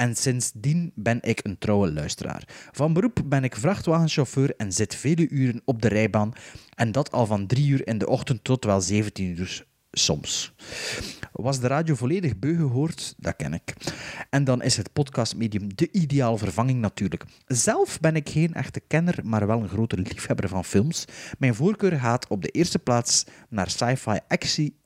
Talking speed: 180 wpm